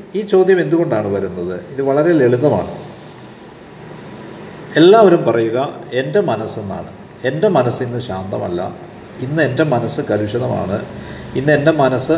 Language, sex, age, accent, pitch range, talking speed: Malayalam, male, 50-69, native, 125-170 Hz, 105 wpm